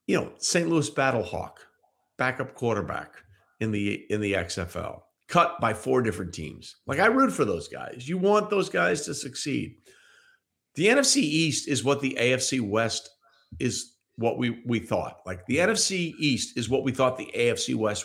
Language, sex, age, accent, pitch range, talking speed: English, male, 50-69, American, 115-165 Hz, 175 wpm